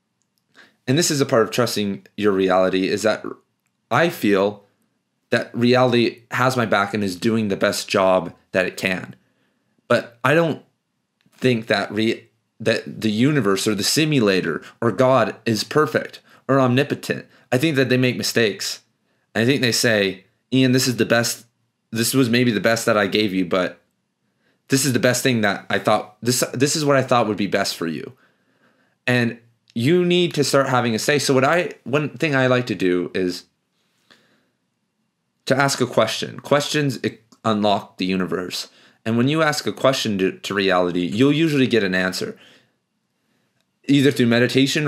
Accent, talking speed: American, 175 wpm